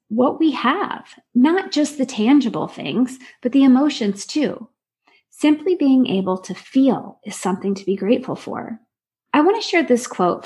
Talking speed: 165 wpm